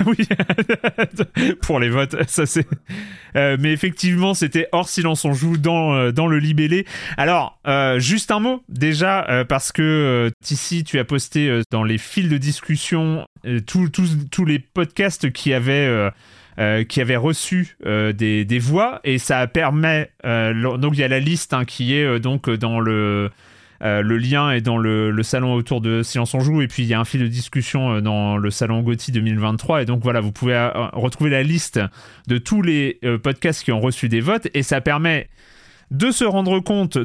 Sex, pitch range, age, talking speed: male, 120-160 Hz, 30-49, 200 wpm